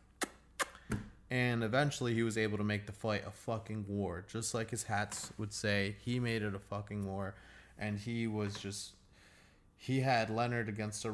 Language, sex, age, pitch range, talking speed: English, male, 20-39, 100-125 Hz, 180 wpm